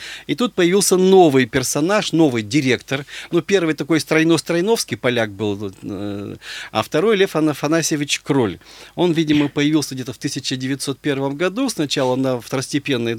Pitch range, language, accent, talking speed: 130-165 Hz, Russian, native, 125 wpm